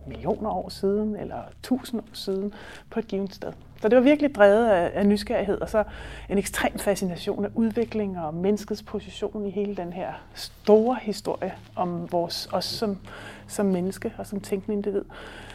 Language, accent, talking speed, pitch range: Danish, native, 165 wpm, 195-230 Hz